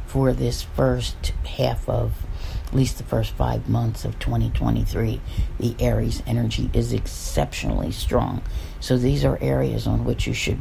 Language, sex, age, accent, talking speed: English, female, 50-69, American, 155 wpm